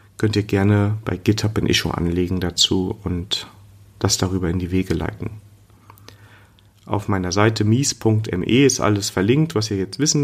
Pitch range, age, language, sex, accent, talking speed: 95-110 Hz, 30-49, German, male, German, 160 wpm